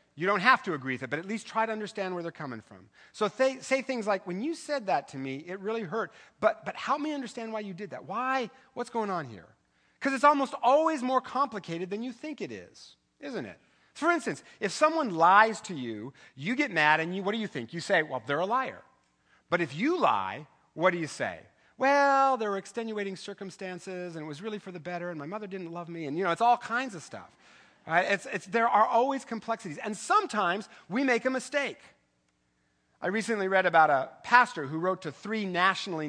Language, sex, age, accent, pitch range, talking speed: English, male, 40-59, American, 160-230 Hz, 225 wpm